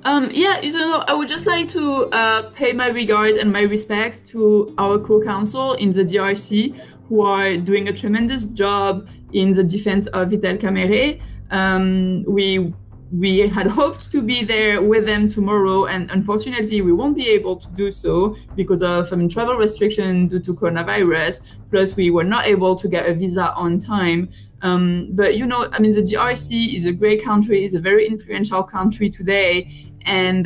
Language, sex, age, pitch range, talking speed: English, female, 20-39, 180-210 Hz, 185 wpm